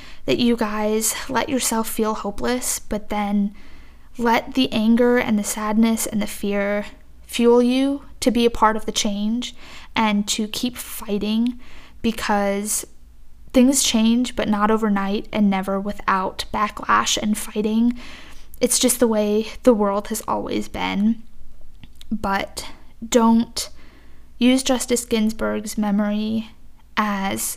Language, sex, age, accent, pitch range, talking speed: English, female, 10-29, American, 205-235 Hz, 130 wpm